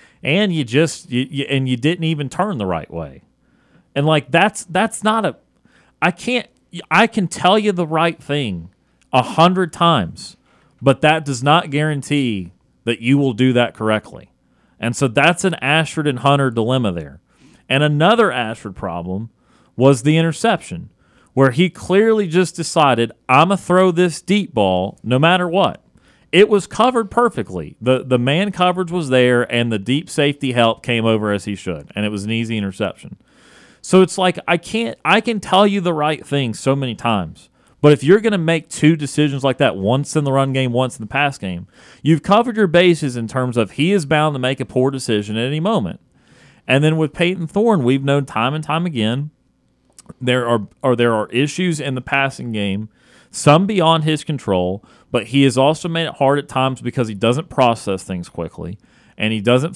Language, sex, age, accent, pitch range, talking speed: English, male, 40-59, American, 115-165 Hz, 190 wpm